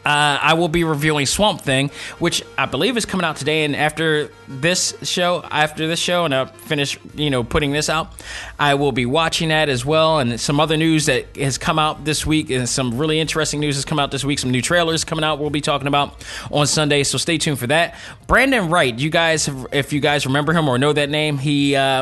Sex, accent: male, American